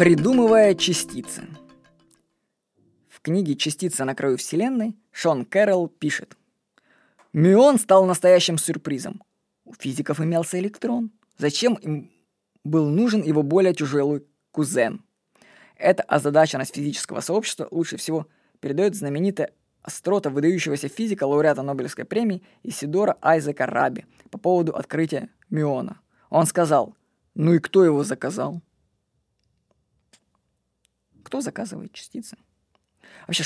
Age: 20-39